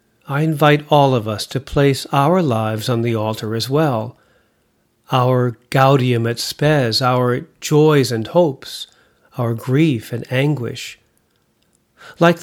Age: 50-69